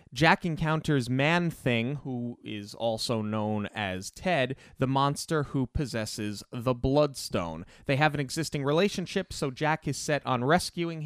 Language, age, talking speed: English, 30-49, 140 wpm